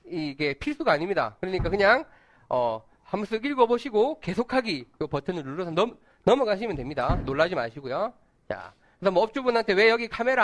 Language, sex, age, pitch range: Korean, male, 30-49, 160-260 Hz